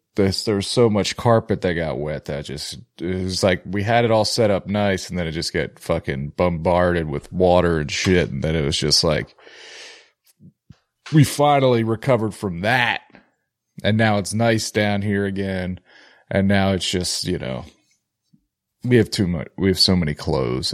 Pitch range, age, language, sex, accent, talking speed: 90-115 Hz, 30-49, English, male, American, 190 wpm